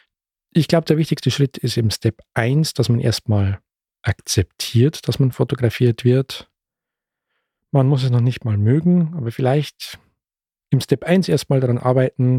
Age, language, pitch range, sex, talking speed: 40-59, German, 120-150 Hz, male, 155 wpm